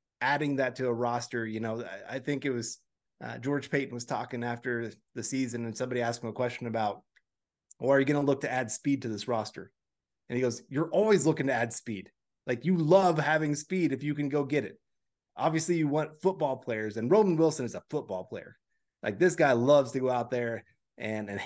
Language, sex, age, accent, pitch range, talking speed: English, male, 30-49, American, 115-145 Hz, 225 wpm